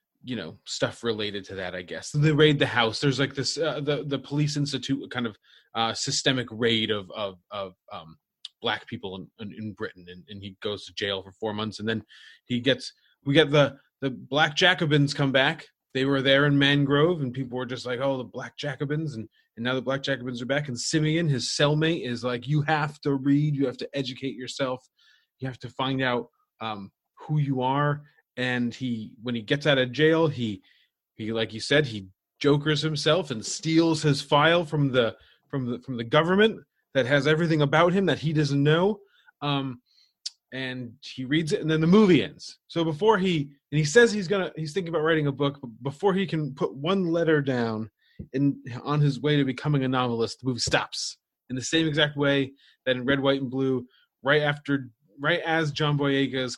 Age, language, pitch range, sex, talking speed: 30-49, English, 125-150 Hz, male, 210 wpm